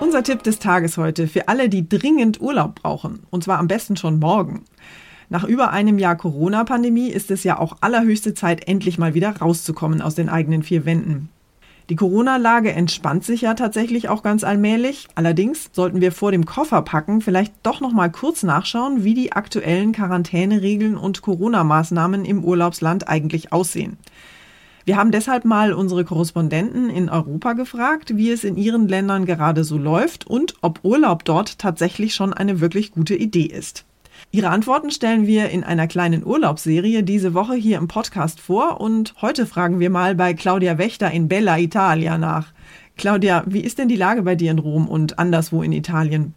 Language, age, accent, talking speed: German, 30-49, German, 175 wpm